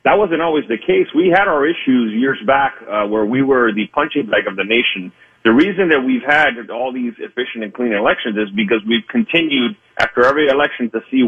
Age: 40-59